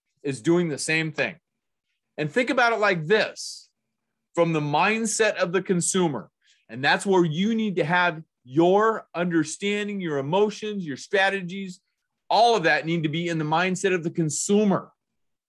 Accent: American